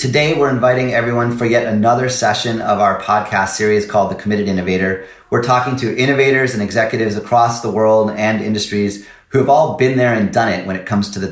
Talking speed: 210 wpm